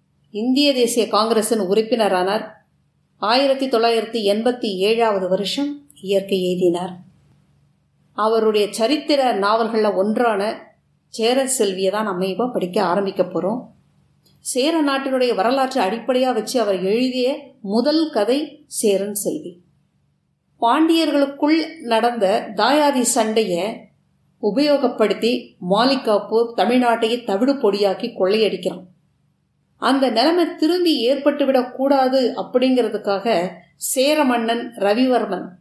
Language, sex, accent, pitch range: Tamil, female, native, 205-260 Hz